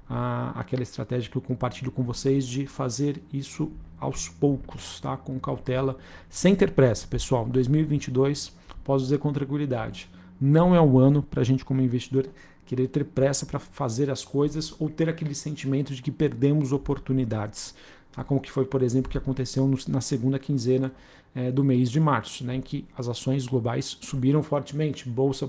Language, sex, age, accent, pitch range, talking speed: Portuguese, male, 40-59, Brazilian, 125-140 Hz, 175 wpm